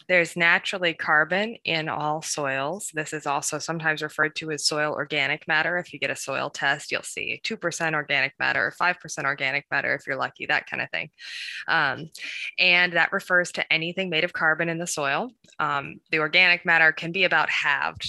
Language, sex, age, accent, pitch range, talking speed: English, female, 20-39, American, 155-205 Hz, 190 wpm